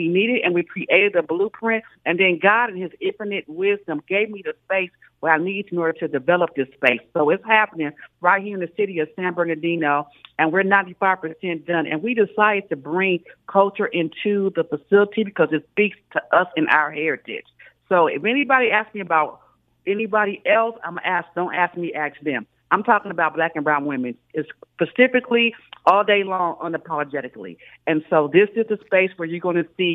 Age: 50-69